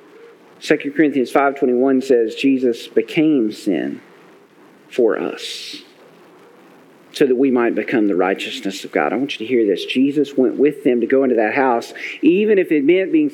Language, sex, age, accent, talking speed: English, male, 40-59, American, 170 wpm